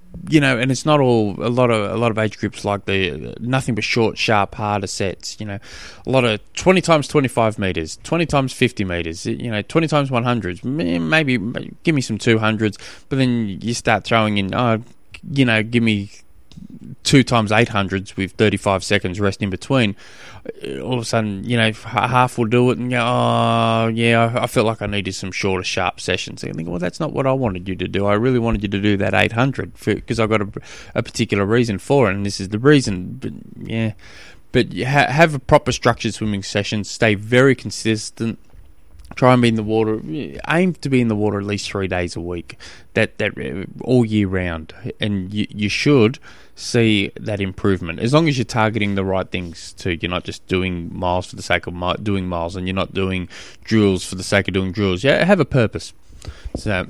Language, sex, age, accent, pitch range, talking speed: English, male, 20-39, Australian, 95-120 Hz, 215 wpm